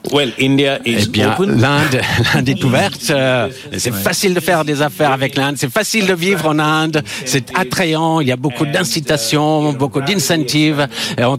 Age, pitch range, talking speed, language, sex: 60-79, 135-160 Hz, 160 wpm, French, male